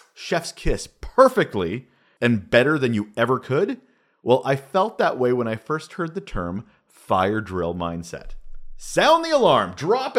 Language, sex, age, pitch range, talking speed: English, male, 30-49, 115-165 Hz, 160 wpm